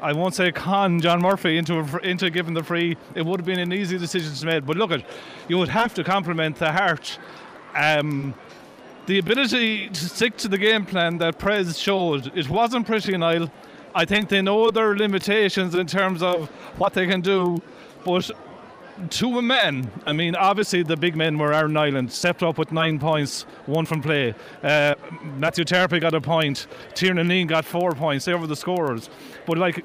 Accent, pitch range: Irish, 160-185 Hz